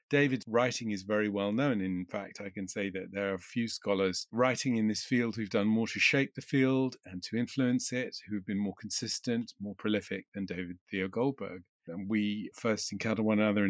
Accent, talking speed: British, 215 wpm